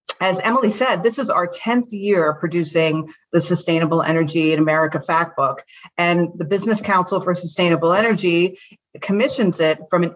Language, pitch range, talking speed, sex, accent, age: English, 160-195 Hz, 155 wpm, female, American, 40-59